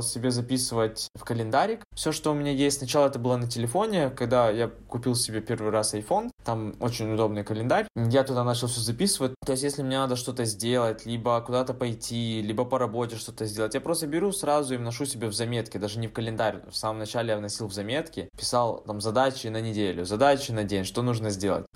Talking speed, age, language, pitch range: 210 wpm, 20-39, Russian, 110-130 Hz